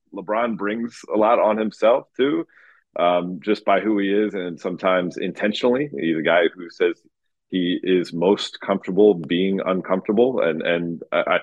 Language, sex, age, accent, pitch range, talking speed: English, male, 30-49, American, 85-105 Hz, 160 wpm